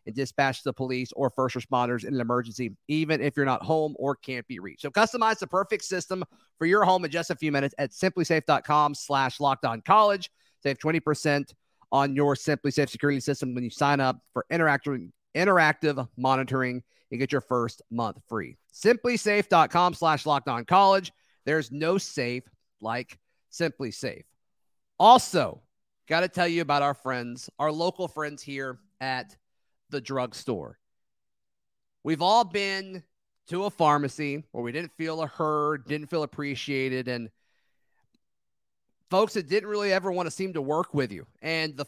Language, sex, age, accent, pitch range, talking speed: English, male, 40-59, American, 135-170 Hz, 165 wpm